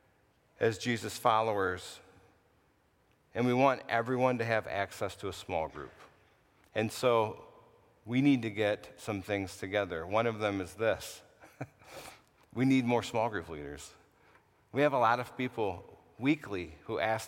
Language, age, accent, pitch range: English, 50-69, American, 95-120 Hz